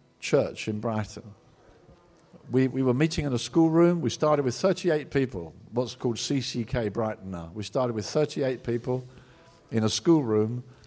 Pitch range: 110-135 Hz